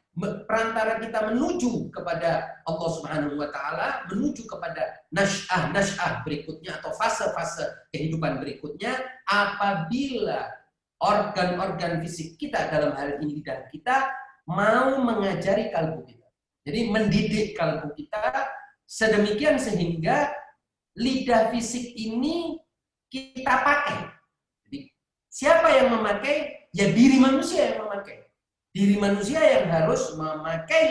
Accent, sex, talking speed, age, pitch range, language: native, male, 105 wpm, 40-59, 180-260 Hz, Indonesian